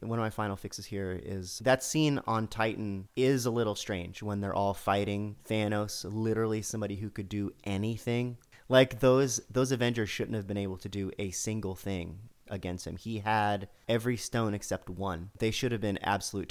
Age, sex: 30-49, male